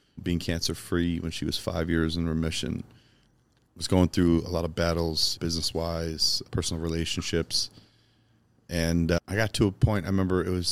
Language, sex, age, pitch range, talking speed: English, male, 30-49, 85-110 Hz, 175 wpm